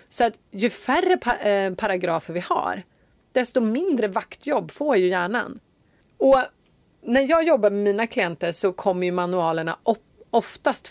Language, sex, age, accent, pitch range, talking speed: Swedish, female, 30-49, native, 175-240 Hz, 155 wpm